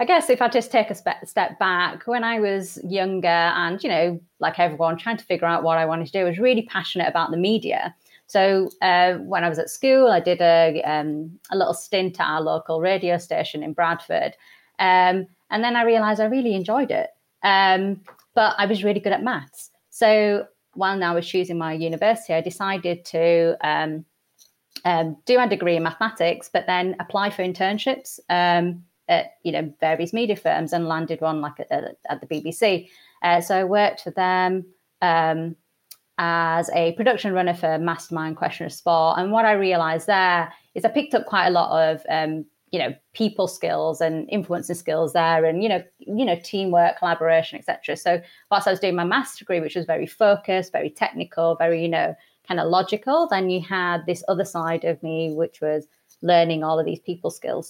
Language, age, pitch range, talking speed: English, 30-49, 165-200 Hz, 200 wpm